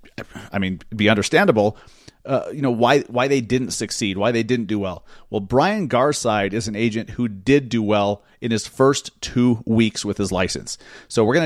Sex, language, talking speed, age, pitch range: male, English, 200 wpm, 30-49, 110-130 Hz